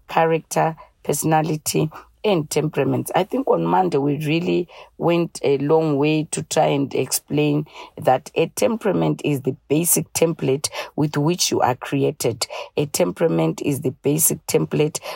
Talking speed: 145 wpm